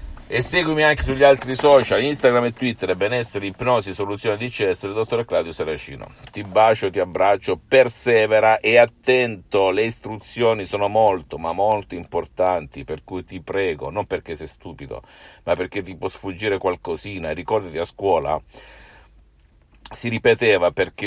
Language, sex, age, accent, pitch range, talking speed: Italian, male, 50-69, native, 85-120 Hz, 145 wpm